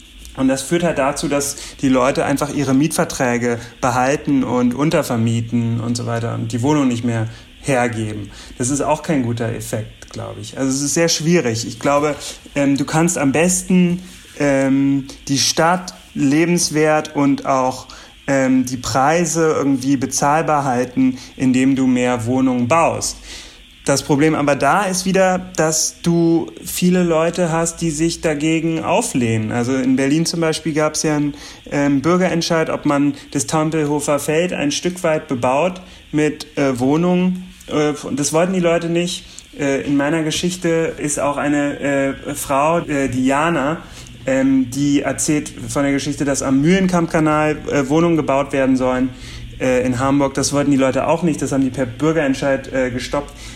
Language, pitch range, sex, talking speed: German, 130-160 Hz, male, 165 wpm